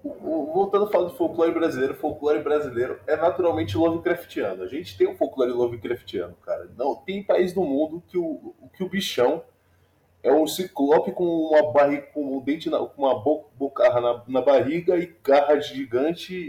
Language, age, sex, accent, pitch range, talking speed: Portuguese, 20-39, male, Brazilian, 115-195 Hz, 160 wpm